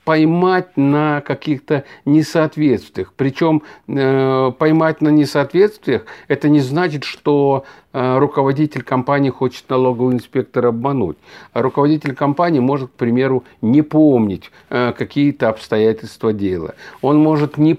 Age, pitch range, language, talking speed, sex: 50-69, 120-145 Hz, Russian, 105 wpm, male